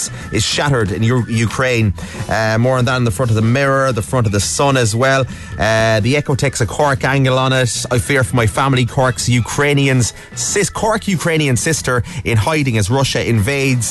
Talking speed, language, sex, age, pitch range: 195 wpm, English, male, 30-49, 110-135 Hz